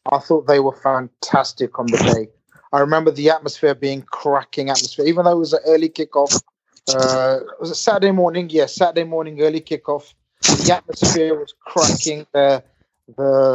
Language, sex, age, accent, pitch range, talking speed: English, male, 30-49, British, 140-180 Hz, 175 wpm